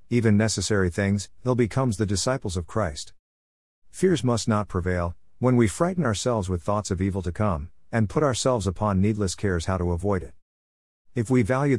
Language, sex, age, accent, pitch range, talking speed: English, male, 50-69, American, 90-120 Hz, 185 wpm